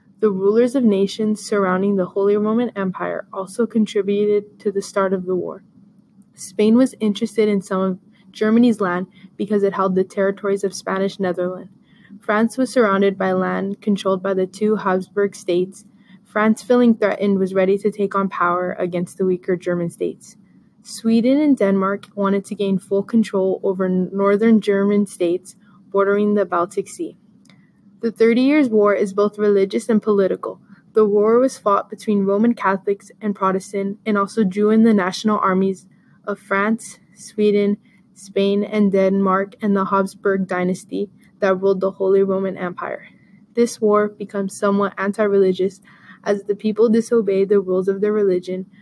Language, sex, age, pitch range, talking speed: English, female, 20-39, 190-210 Hz, 160 wpm